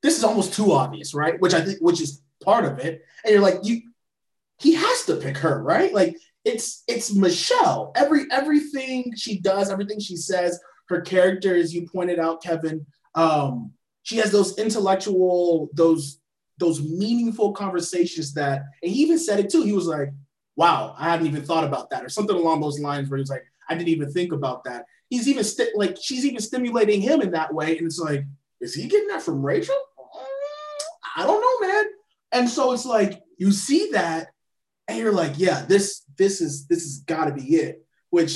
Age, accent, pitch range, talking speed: 20-39, American, 150-230 Hz, 200 wpm